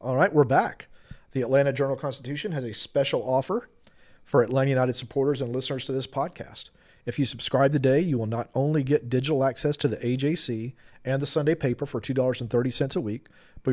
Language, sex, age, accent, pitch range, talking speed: English, male, 40-59, American, 120-140 Hz, 190 wpm